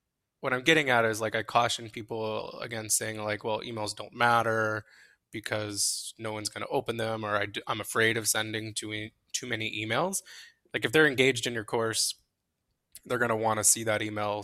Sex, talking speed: male, 200 wpm